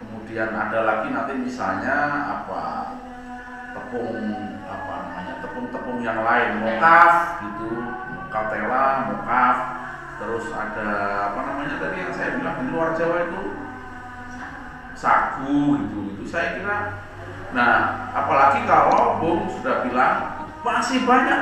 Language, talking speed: Indonesian, 110 wpm